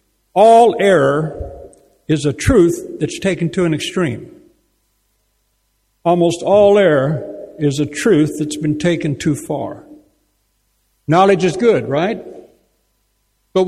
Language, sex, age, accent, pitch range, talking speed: English, male, 60-79, American, 145-185 Hz, 115 wpm